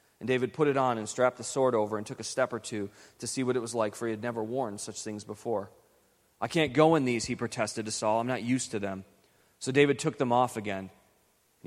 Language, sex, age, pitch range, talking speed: English, male, 30-49, 105-130 Hz, 260 wpm